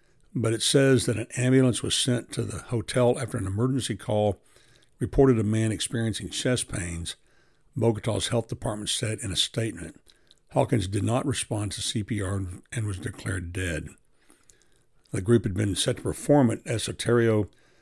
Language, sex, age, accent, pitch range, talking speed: English, male, 60-79, American, 100-120 Hz, 160 wpm